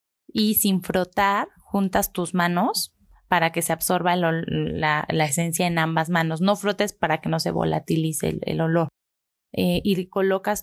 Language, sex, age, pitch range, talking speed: Spanish, female, 20-39, 170-205 Hz, 170 wpm